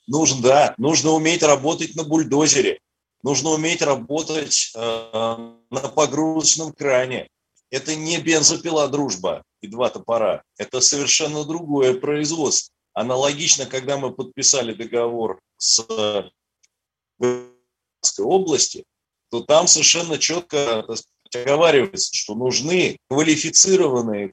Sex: male